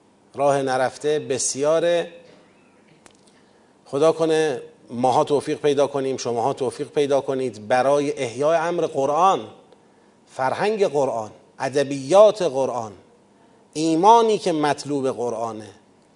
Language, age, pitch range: Persian, 30-49, 135-165 Hz